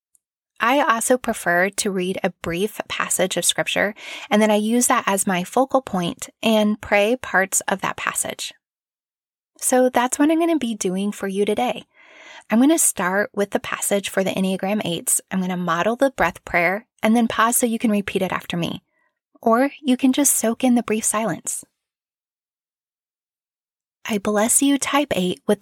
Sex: female